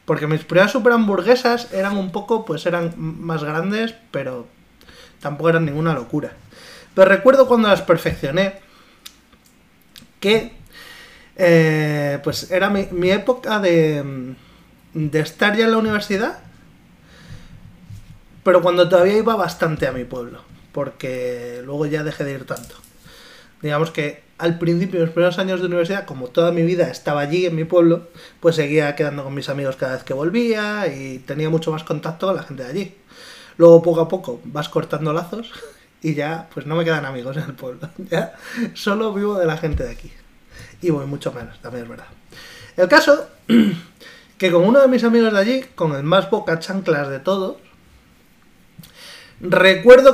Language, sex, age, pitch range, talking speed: Spanish, male, 20-39, 150-200 Hz, 165 wpm